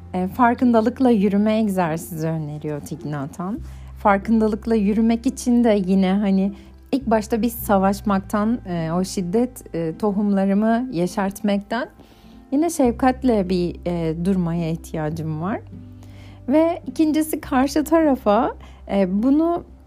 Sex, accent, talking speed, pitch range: female, native, 90 wpm, 175-235 Hz